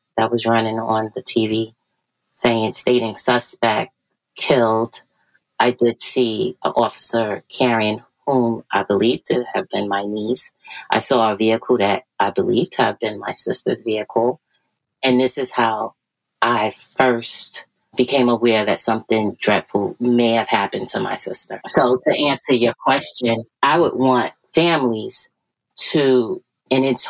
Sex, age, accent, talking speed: female, 30-49, American, 145 wpm